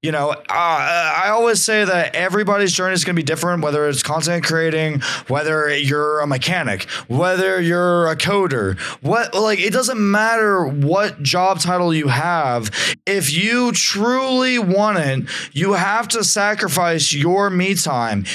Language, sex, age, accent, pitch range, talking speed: English, male, 20-39, American, 155-210 Hz, 155 wpm